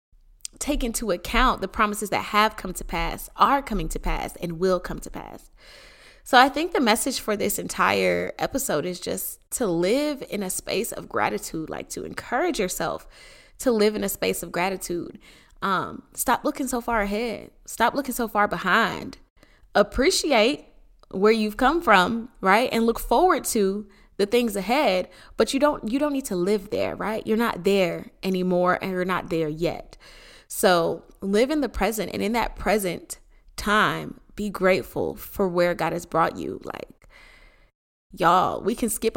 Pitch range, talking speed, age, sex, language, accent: 180-230 Hz, 175 wpm, 20-39, female, English, American